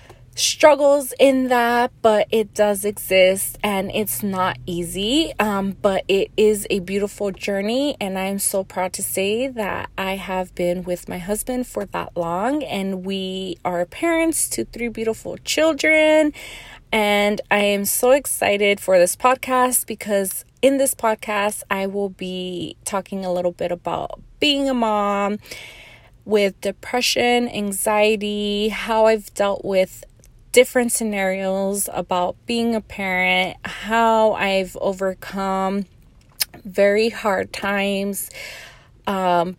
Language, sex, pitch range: English, female, 185-220 Hz